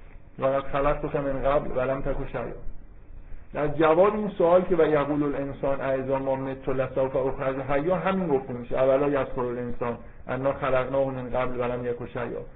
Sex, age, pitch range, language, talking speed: male, 50-69, 130-155 Hz, Persian, 85 wpm